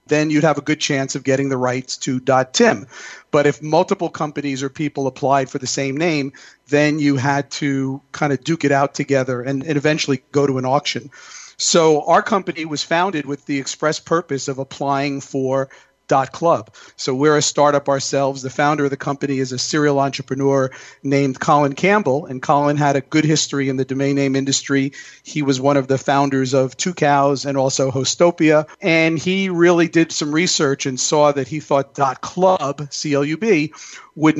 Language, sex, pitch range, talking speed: English, male, 135-155 Hz, 195 wpm